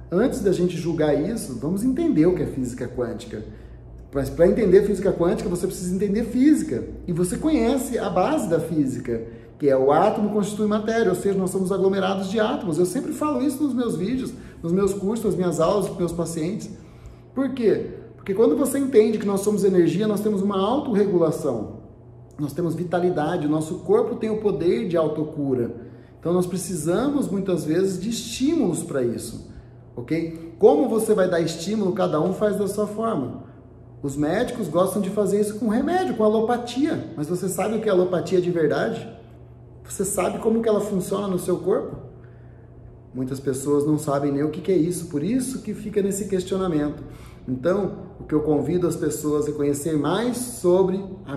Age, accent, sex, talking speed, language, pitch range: 30-49, Brazilian, male, 185 wpm, Portuguese, 145-210 Hz